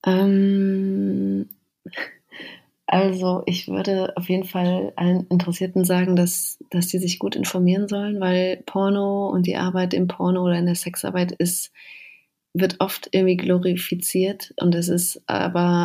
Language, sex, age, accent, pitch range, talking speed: German, female, 30-49, German, 175-190 Hz, 140 wpm